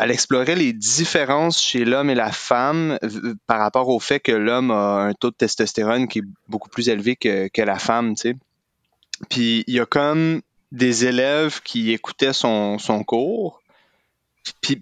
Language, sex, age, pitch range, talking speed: French, male, 30-49, 105-135 Hz, 180 wpm